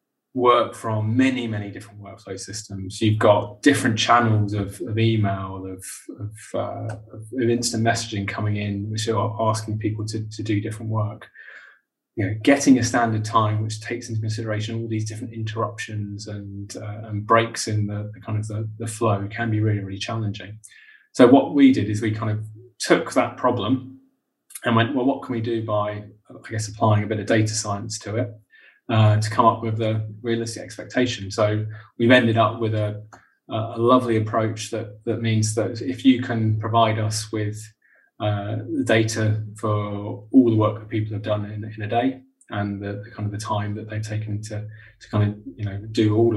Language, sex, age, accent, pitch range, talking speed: English, male, 20-39, British, 105-115 Hz, 195 wpm